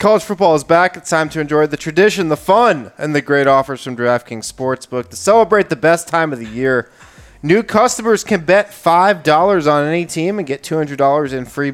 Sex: male